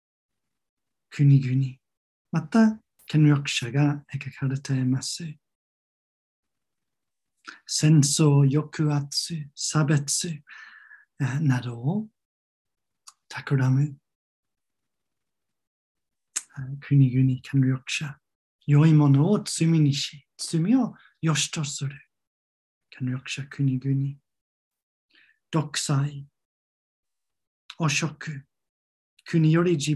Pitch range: 135-155 Hz